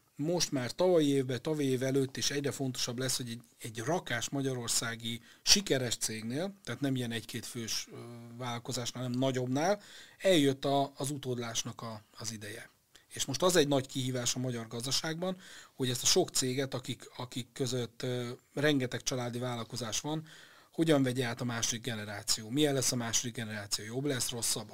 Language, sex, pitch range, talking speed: Hungarian, male, 115-140 Hz, 170 wpm